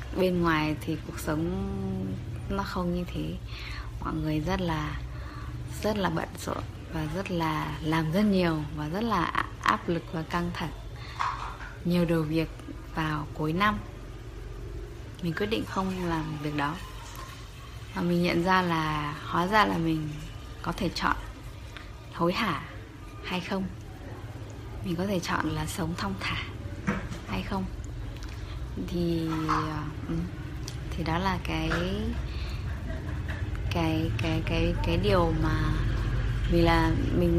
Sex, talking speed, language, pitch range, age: female, 135 wpm, Vietnamese, 105-165 Hz, 20-39